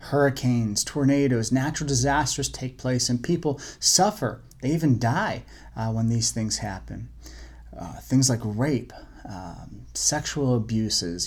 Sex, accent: male, American